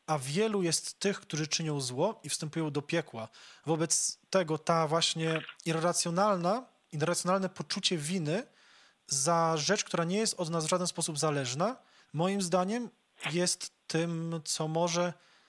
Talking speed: 140 wpm